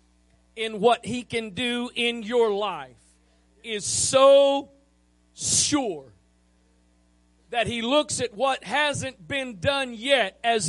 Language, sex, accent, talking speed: English, male, American, 120 wpm